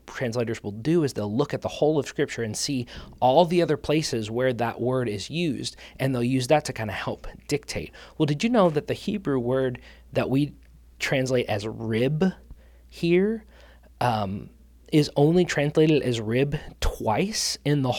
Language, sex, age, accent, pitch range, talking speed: English, male, 20-39, American, 110-150 Hz, 180 wpm